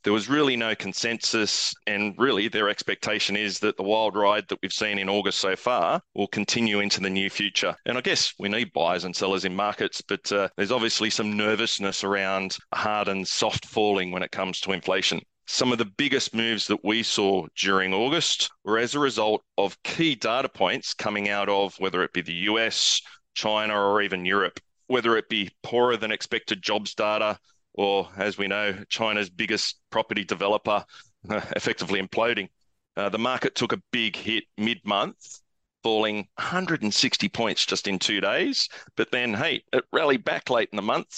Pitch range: 100-115 Hz